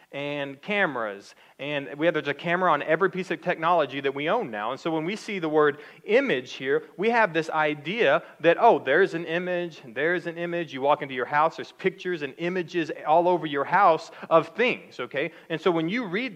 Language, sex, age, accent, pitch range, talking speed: English, male, 30-49, American, 150-185 Hz, 215 wpm